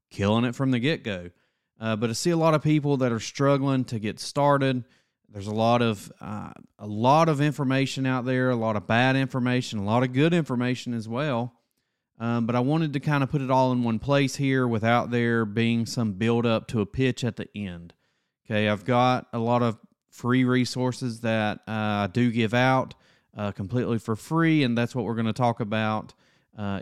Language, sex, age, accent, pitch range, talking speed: English, male, 30-49, American, 110-140 Hz, 210 wpm